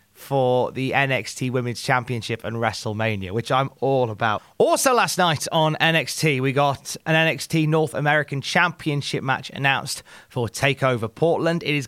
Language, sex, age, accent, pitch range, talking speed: English, male, 30-49, British, 125-165 Hz, 150 wpm